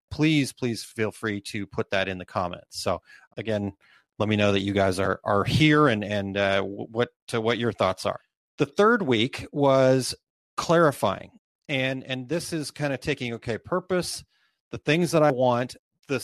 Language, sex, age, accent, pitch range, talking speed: English, male, 30-49, American, 105-130 Hz, 185 wpm